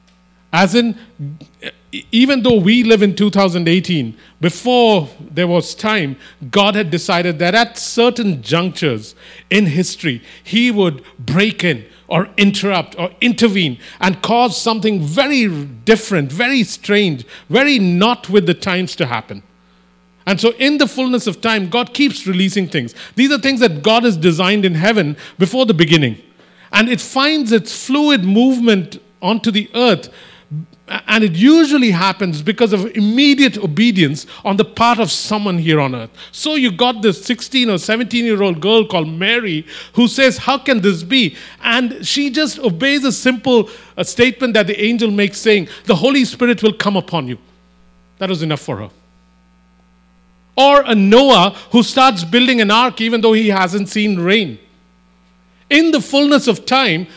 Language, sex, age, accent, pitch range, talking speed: English, male, 50-69, Indian, 165-235 Hz, 160 wpm